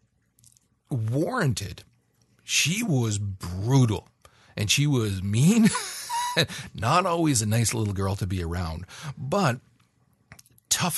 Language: English